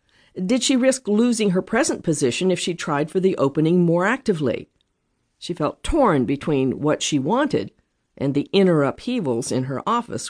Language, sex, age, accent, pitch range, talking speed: English, female, 50-69, American, 145-205 Hz, 170 wpm